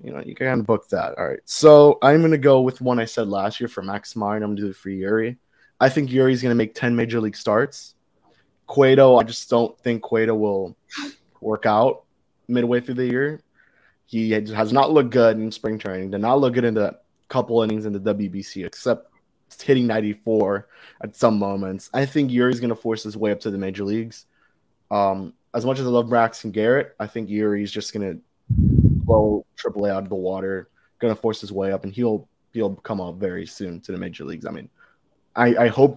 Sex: male